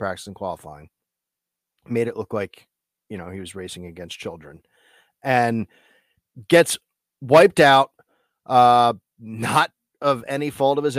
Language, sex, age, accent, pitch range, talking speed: English, male, 30-49, American, 95-125 Hz, 135 wpm